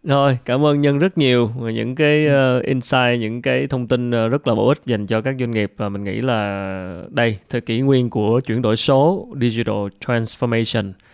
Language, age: Vietnamese, 20-39